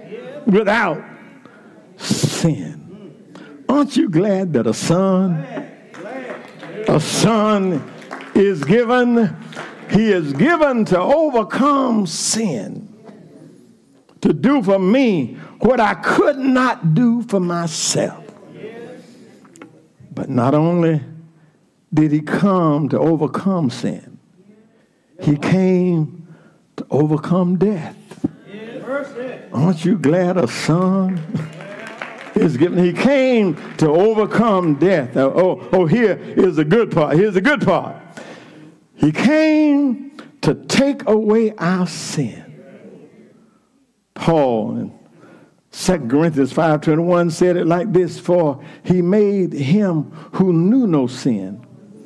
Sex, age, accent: male, 60-79, American